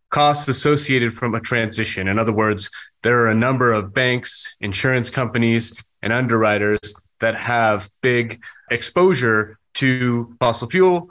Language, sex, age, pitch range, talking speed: English, male, 30-49, 110-135 Hz, 135 wpm